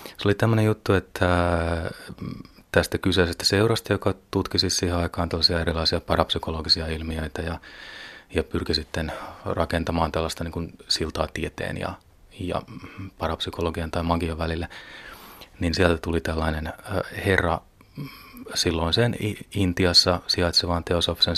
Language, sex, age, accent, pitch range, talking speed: Finnish, male, 30-49, native, 85-95 Hz, 110 wpm